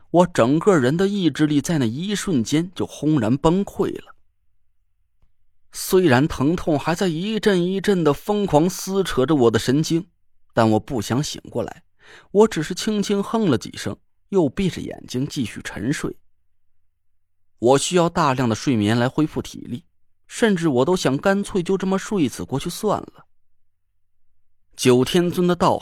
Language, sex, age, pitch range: Chinese, male, 30-49, 110-185 Hz